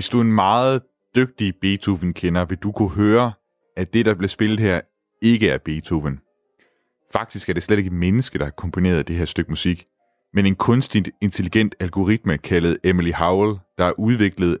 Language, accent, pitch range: Danish, native, 85-110 Hz